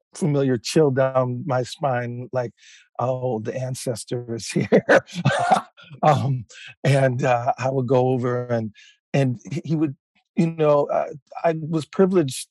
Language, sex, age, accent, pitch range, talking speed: English, male, 50-69, American, 125-160 Hz, 135 wpm